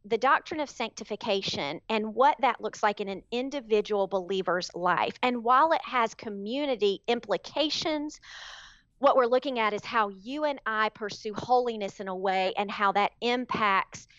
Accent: American